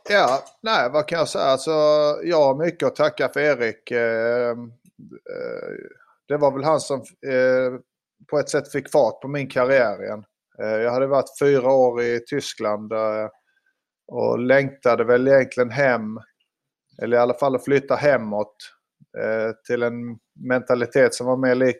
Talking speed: 145 wpm